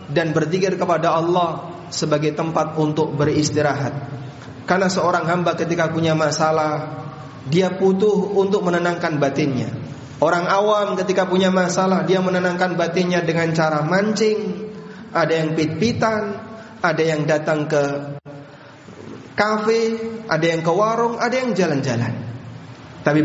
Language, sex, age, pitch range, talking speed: Indonesian, male, 30-49, 145-185 Hz, 120 wpm